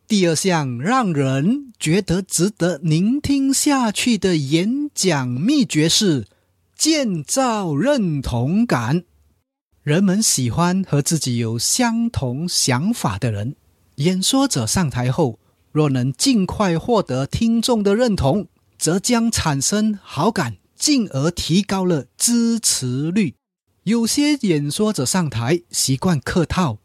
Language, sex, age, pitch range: Chinese, male, 30-49, 130-210 Hz